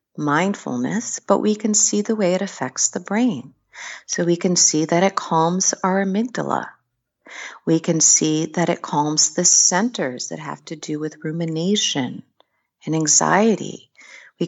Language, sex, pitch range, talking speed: English, female, 165-210 Hz, 155 wpm